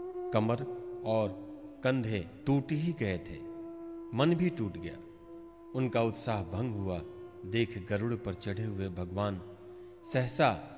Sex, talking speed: male, 120 wpm